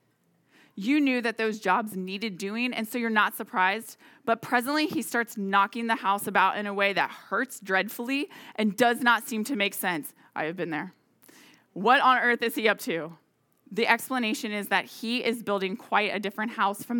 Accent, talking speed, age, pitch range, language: American, 200 wpm, 20-39, 200-260 Hz, English